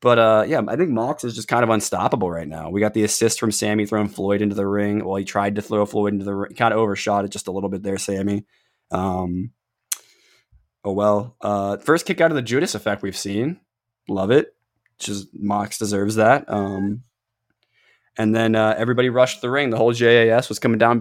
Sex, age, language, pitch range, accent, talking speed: male, 20-39, English, 100-120 Hz, American, 215 wpm